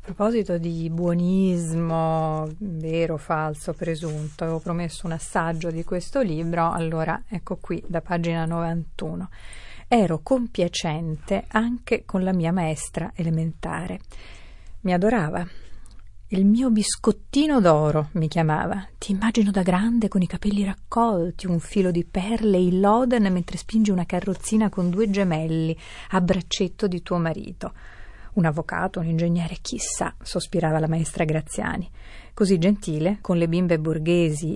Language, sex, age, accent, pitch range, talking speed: Italian, female, 30-49, native, 160-195 Hz, 135 wpm